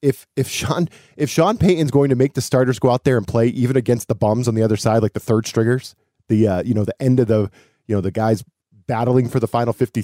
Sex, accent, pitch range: male, American, 110-140 Hz